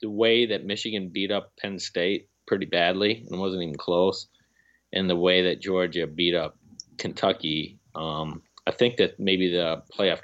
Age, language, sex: 30-49, English, male